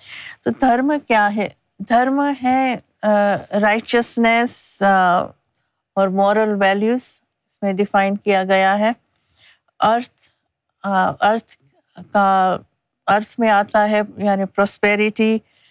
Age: 50-69